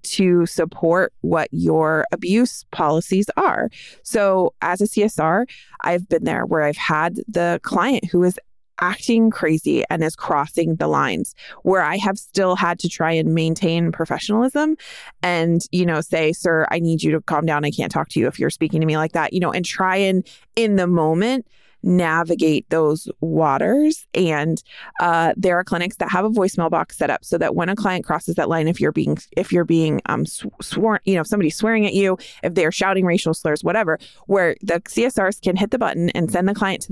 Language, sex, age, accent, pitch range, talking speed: English, female, 20-39, American, 165-210 Hz, 205 wpm